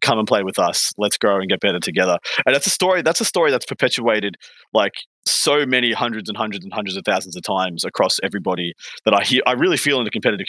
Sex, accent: male, Australian